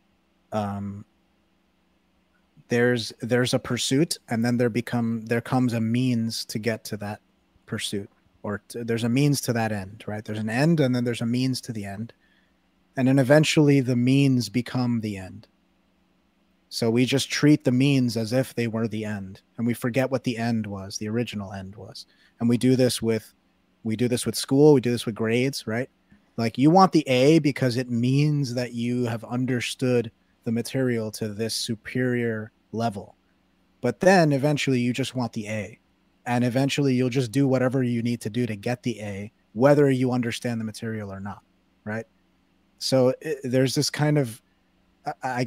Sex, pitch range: male, 105-130 Hz